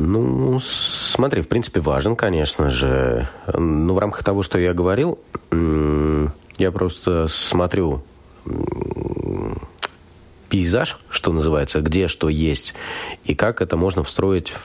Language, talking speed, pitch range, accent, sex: Russian, 115 wpm, 70-90 Hz, native, male